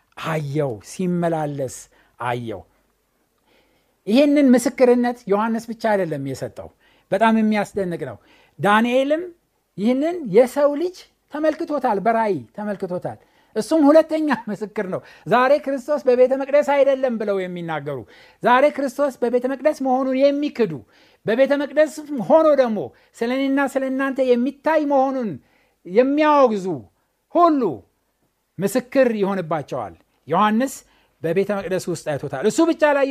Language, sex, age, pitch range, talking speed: Amharic, male, 60-79, 200-280 Hz, 105 wpm